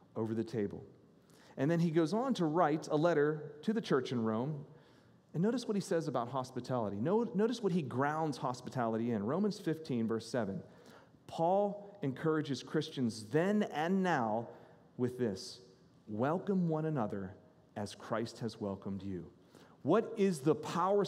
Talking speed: 155 wpm